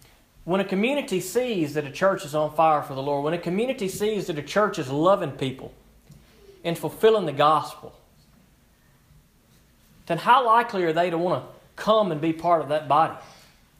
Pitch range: 165-215 Hz